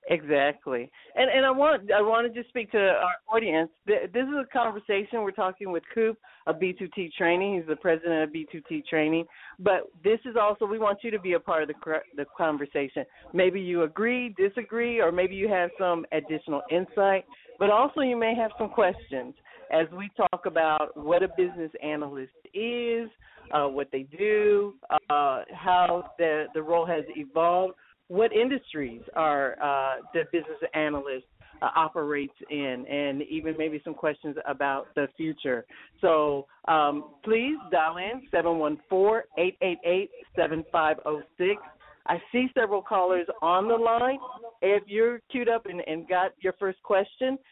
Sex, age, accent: female, 50-69, American